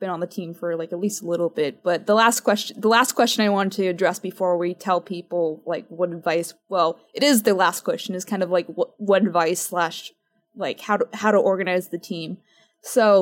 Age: 20-39